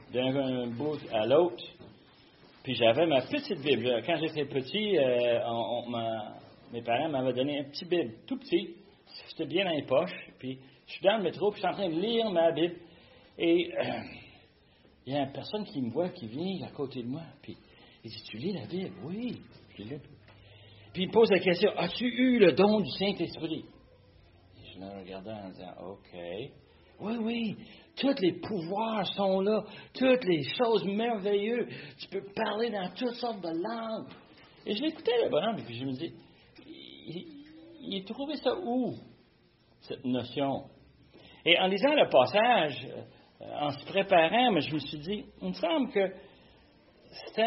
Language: French